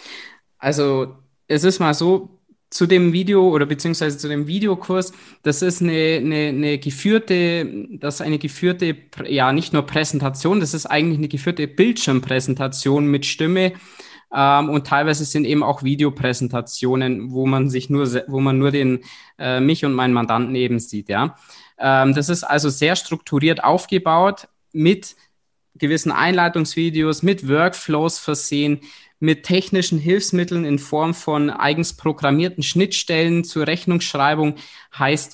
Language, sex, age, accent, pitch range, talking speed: German, male, 20-39, German, 140-160 Hz, 140 wpm